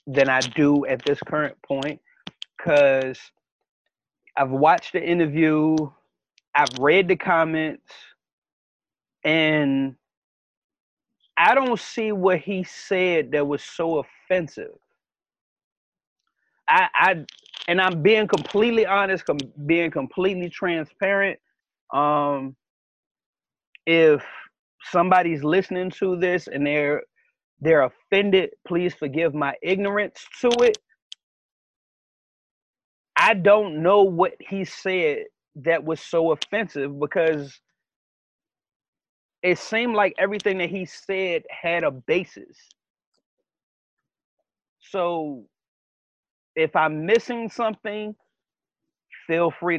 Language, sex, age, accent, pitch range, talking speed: English, male, 30-49, American, 150-195 Hz, 100 wpm